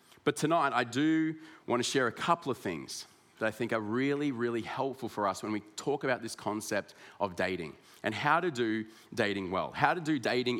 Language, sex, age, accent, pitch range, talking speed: English, male, 30-49, Australian, 105-135 Hz, 215 wpm